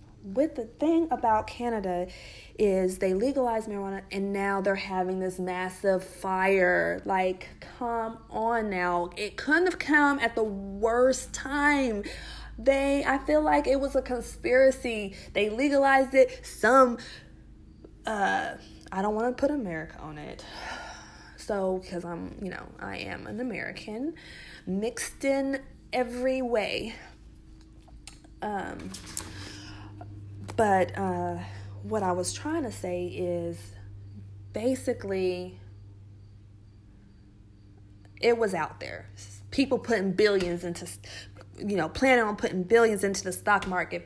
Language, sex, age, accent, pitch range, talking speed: English, female, 20-39, American, 175-245 Hz, 125 wpm